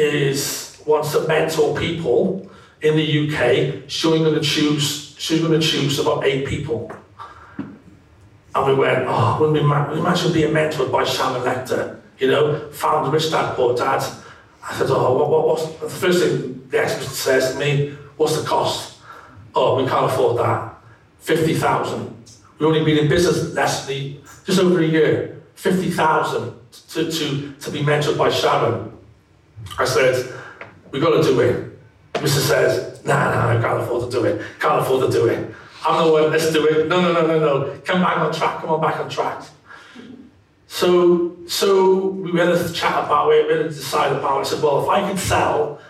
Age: 40-59